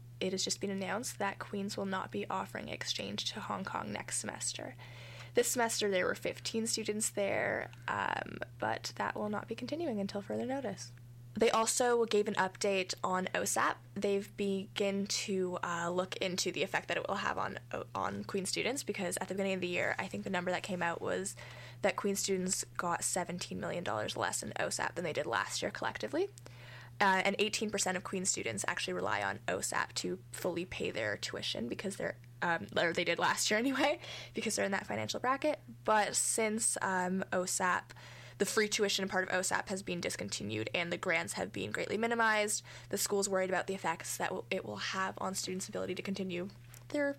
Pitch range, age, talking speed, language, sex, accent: 125-205 Hz, 10-29, 195 wpm, English, female, American